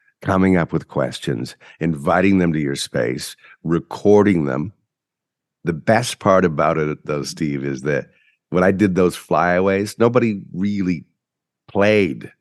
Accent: American